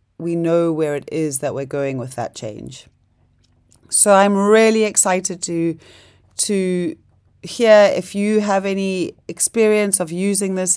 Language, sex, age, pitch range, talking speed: English, female, 30-49, 150-180 Hz, 145 wpm